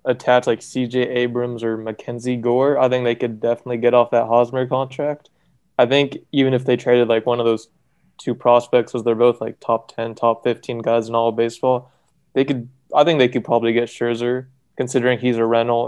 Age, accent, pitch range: 20-39, American, 115-125 Hz